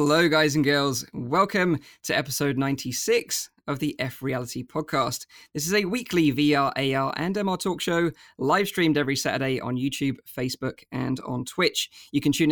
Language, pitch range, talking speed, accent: English, 135-165 Hz, 170 wpm, British